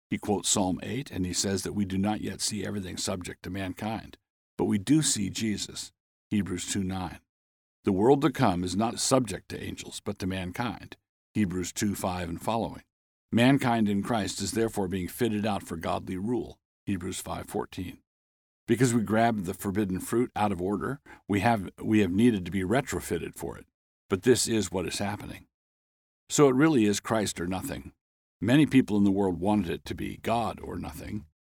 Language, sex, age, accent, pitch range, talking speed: English, male, 50-69, American, 90-110 Hz, 185 wpm